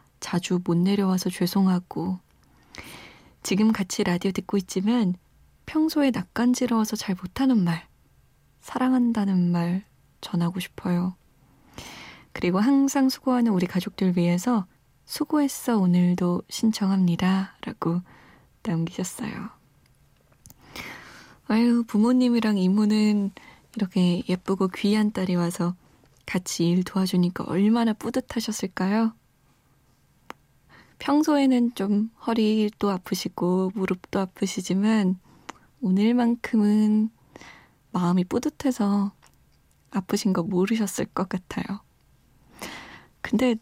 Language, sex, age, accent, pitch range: Korean, female, 20-39, native, 180-230 Hz